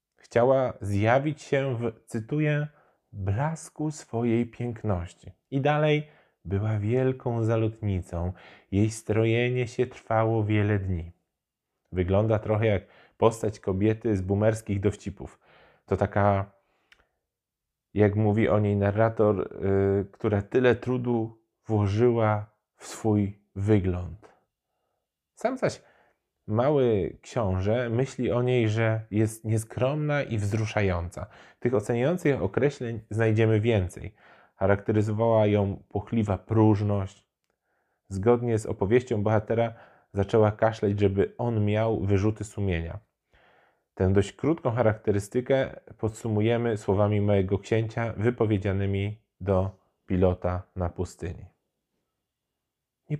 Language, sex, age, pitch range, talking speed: Polish, male, 20-39, 100-120 Hz, 100 wpm